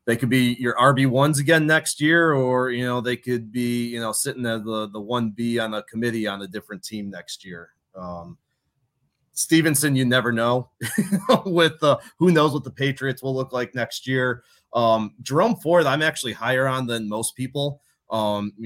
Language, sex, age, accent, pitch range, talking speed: English, male, 30-49, American, 105-125 Hz, 195 wpm